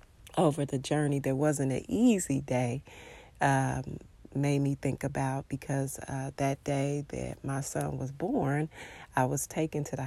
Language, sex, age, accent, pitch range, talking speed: English, female, 30-49, American, 135-150 Hz, 160 wpm